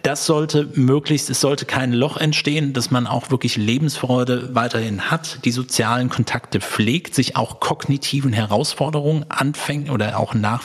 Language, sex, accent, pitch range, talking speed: German, male, German, 115-135 Hz, 150 wpm